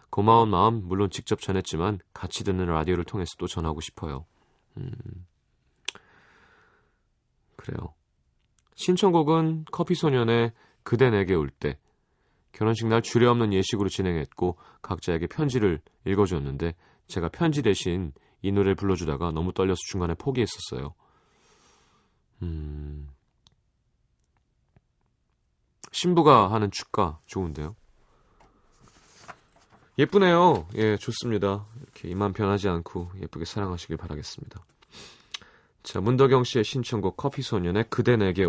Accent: native